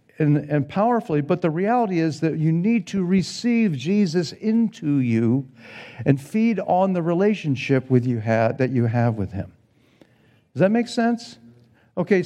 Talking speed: 155 wpm